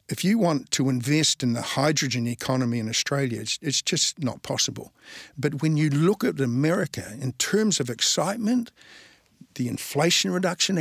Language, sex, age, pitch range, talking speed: English, male, 60-79, 130-155 Hz, 160 wpm